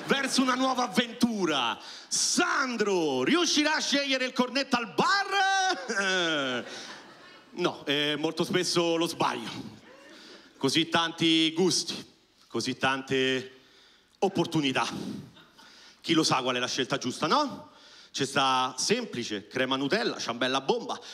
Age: 40-59